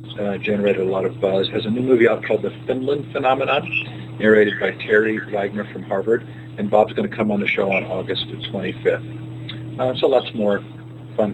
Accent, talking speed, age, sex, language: American, 200 wpm, 40-59, male, English